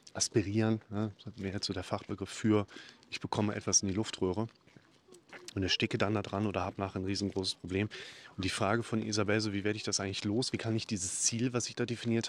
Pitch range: 105-120 Hz